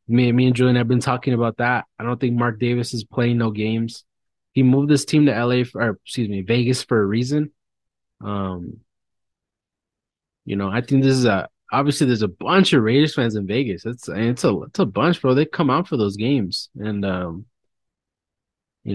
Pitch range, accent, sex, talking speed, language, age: 110-140 Hz, American, male, 205 wpm, English, 20-39